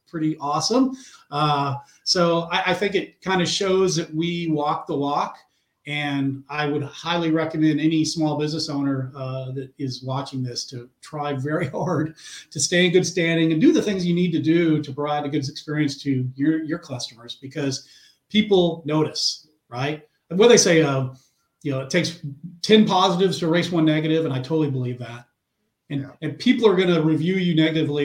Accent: American